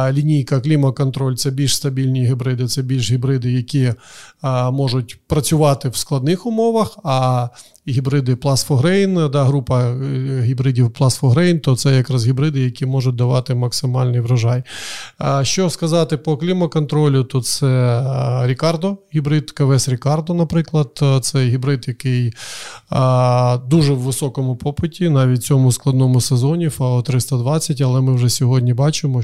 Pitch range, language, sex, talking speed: 125-145 Hz, Ukrainian, male, 130 wpm